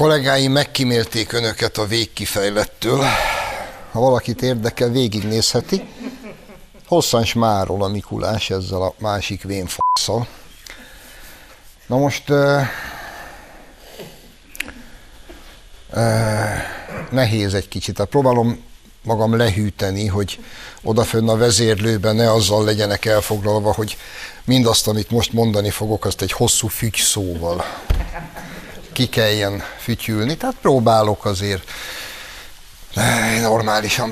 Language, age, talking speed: Hungarian, 60-79, 95 wpm